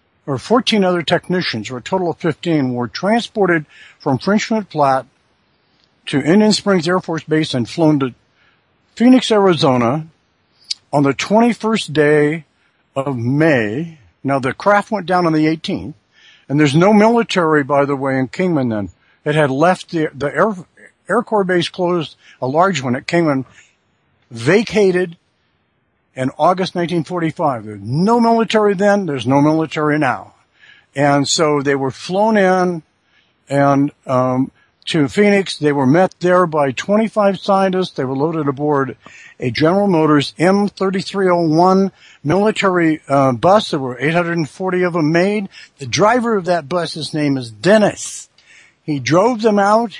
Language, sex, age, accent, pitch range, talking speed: English, male, 60-79, American, 140-190 Hz, 150 wpm